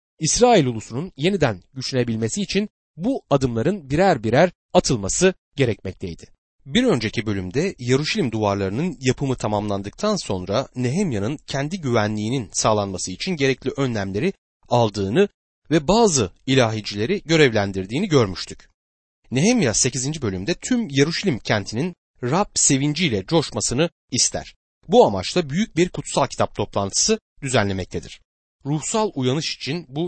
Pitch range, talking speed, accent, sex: 105-170 Hz, 110 wpm, native, male